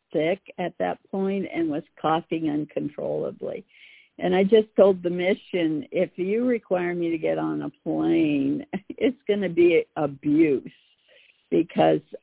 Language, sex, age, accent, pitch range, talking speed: English, female, 60-79, American, 150-210 Hz, 140 wpm